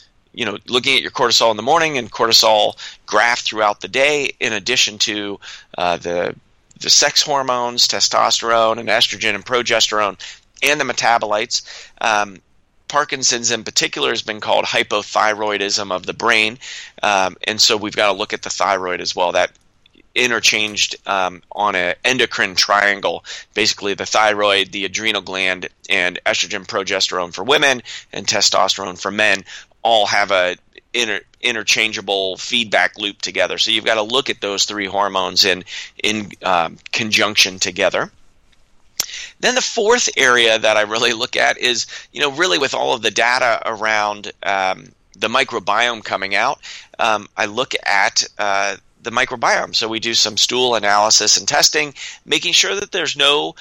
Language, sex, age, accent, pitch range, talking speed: English, male, 30-49, American, 100-125 Hz, 155 wpm